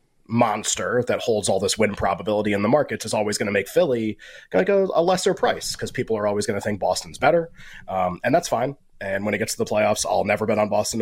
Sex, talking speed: male, 255 wpm